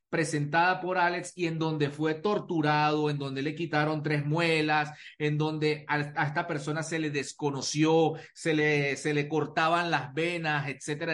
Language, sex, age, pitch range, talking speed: Spanish, male, 30-49, 150-195 Hz, 160 wpm